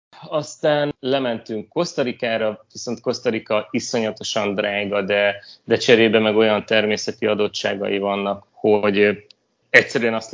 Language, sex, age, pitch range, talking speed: Hungarian, male, 30-49, 100-120 Hz, 105 wpm